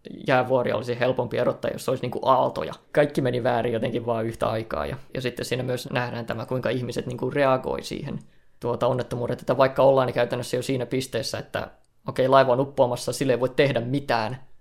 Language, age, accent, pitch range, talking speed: Finnish, 20-39, native, 125-140 Hz, 200 wpm